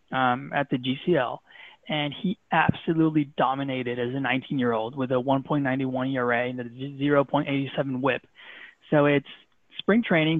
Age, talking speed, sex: 20-39, 135 wpm, male